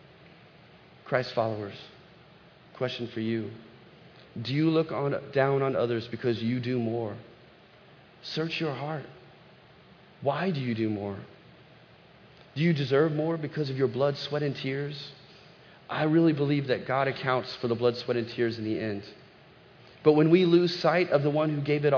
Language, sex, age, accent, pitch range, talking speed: English, male, 30-49, American, 125-160 Hz, 165 wpm